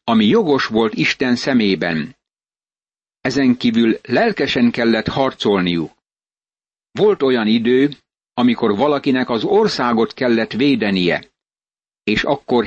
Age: 60-79